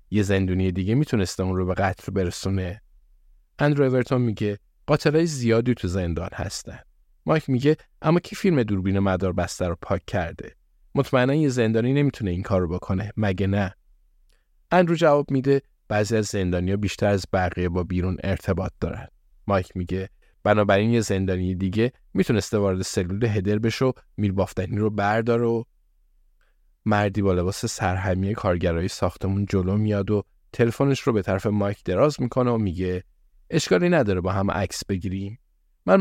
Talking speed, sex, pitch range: 155 wpm, male, 95-125 Hz